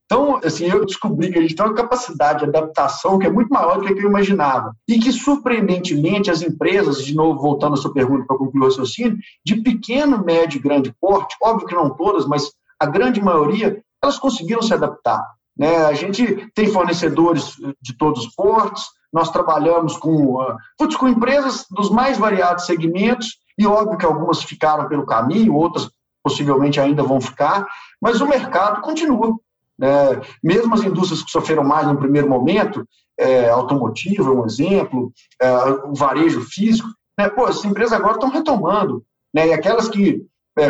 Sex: male